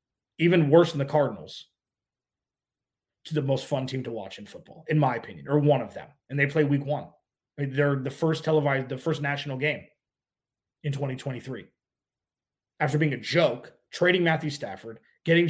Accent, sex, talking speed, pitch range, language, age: American, male, 170 wpm, 140-160 Hz, English, 30-49